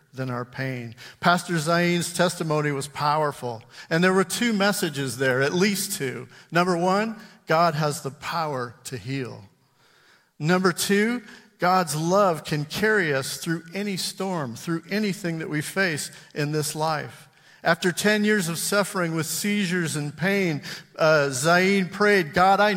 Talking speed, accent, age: 150 wpm, American, 50-69